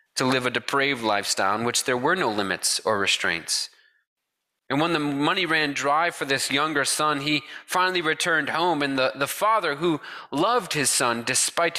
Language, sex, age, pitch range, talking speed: English, male, 30-49, 135-190 Hz, 185 wpm